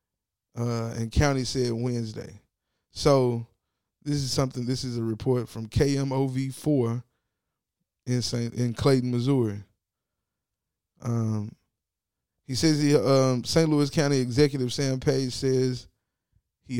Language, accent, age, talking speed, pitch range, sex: English, American, 20-39, 120 wpm, 110-135 Hz, male